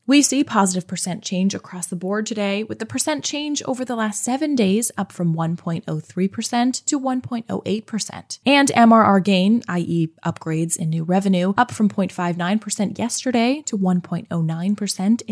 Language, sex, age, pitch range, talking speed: English, female, 20-39, 180-255 Hz, 145 wpm